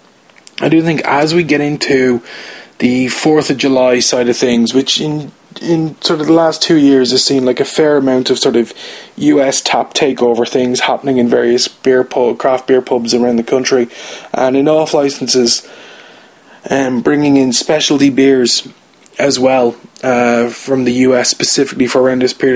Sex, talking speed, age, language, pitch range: male, 180 wpm, 20-39, English, 120-135 Hz